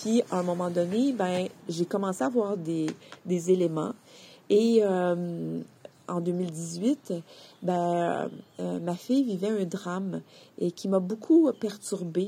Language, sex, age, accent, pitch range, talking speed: French, female, 40-59, Canadian, 180-225 Hz, 135 wpm